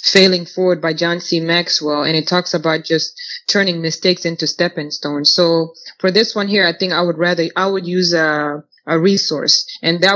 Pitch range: 160-185 Hz